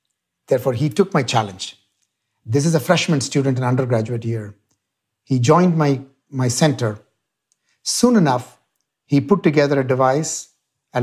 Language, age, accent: English, 60-79, Indian